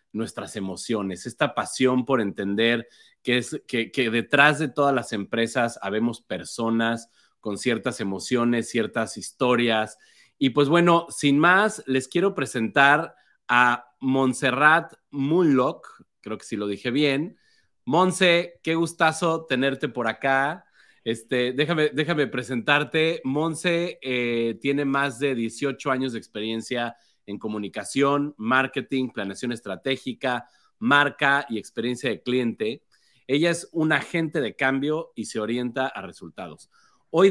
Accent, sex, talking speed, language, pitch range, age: Mexican, male, 130 wpm, Spanish, 115-145 Hz, 30-49